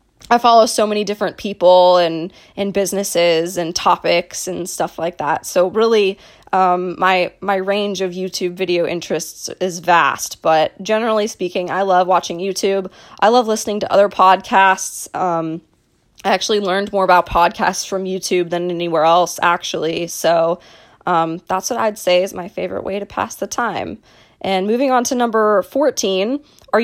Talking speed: 165 wpm